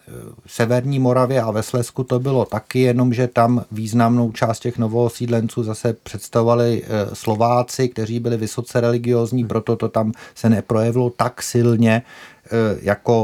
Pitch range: 110-125 Hz